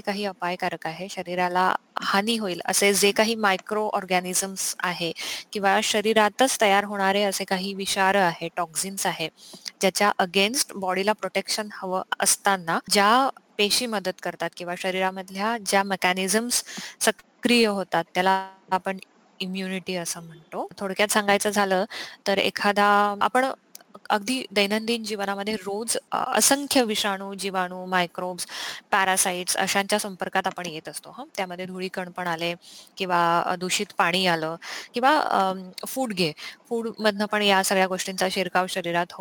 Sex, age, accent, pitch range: female, 20-39, native, 185-210 Hz